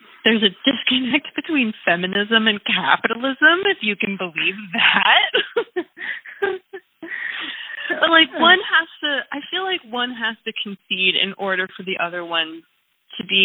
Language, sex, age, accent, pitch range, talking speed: English, female, 20-39, American, 185-240 Hz, 145 wpm